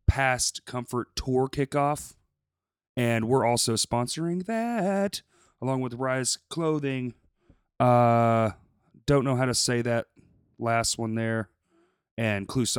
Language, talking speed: English, 115 wpm